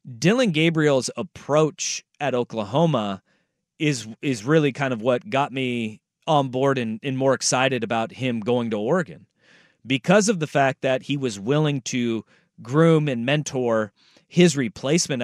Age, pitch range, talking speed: 30-49, 125-170 Hz, 150 wpm